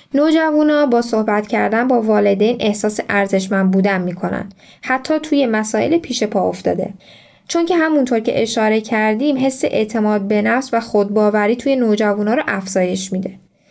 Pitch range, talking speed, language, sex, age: 205-260 Hz, 145 wpm, Persian, female, 10-29